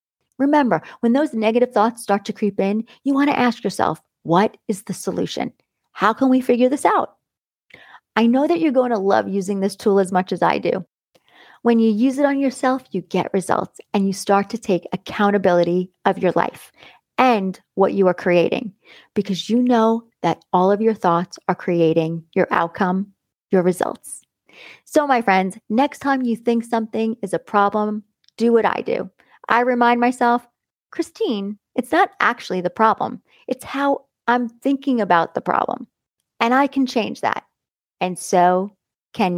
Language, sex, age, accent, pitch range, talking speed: English, female, 40-59, American, 185-240 Hz, 175 wpm